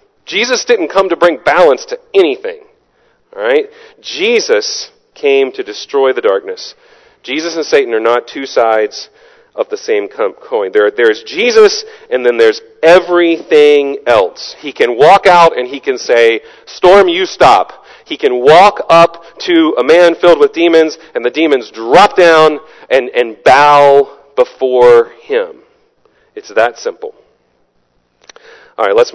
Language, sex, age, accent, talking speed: English, male, 40-59, American, 150 wpm